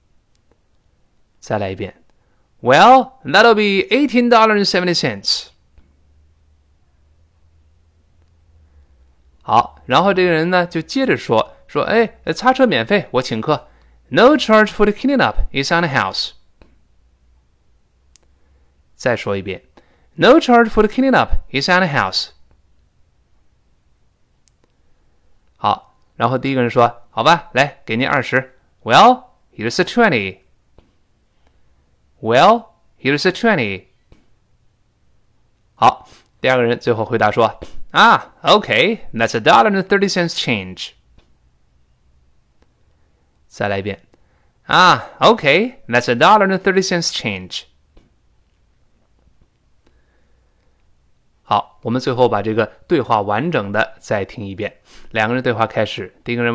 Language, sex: Chinese, male